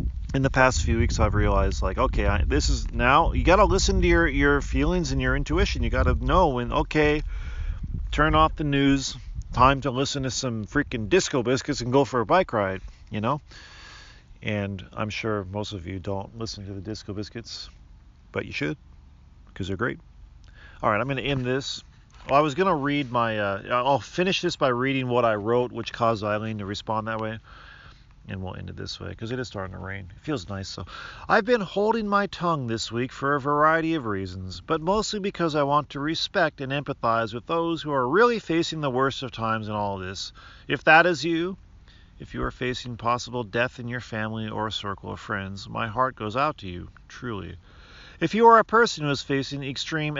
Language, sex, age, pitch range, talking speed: English, male, 40-59, 100-140 Hz, 215 wpm